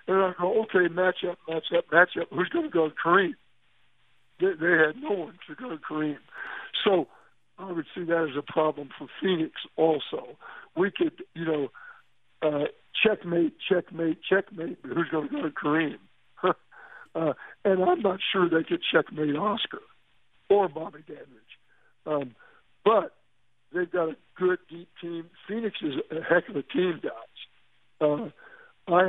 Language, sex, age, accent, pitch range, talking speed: English, male, 60-79, American, 150-190 Hz, 165 wpm